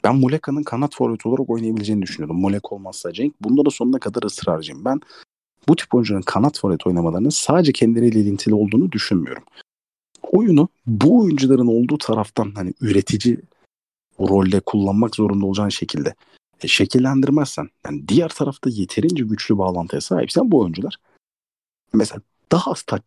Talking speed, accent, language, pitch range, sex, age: 140 wpm, native, Turkish, 100-135 Hz, male, 40-59